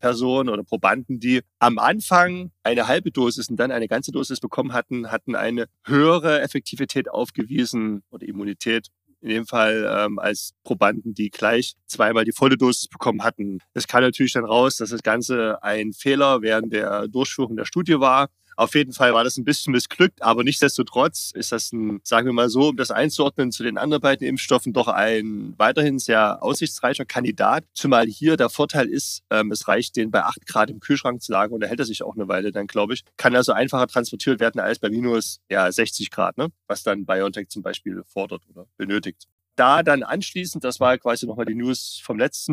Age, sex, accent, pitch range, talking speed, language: 30-49, male, German, 110-135 Hz, 200 wpm, German